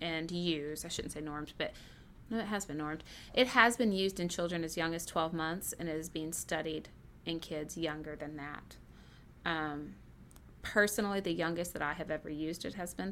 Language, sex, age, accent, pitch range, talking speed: English, female, 30-49, American, 155-190 Hz, 205 wpm